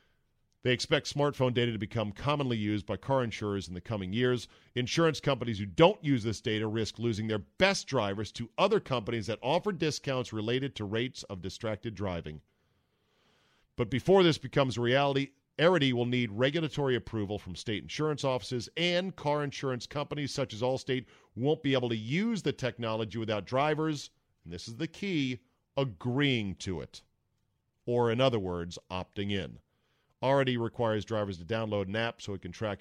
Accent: American